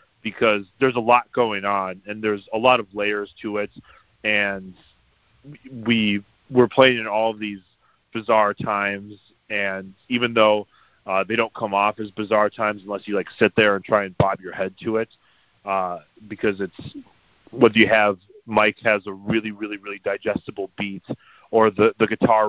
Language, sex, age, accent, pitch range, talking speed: English, male, 30-49, American, 100-110 Hz, 180 wpm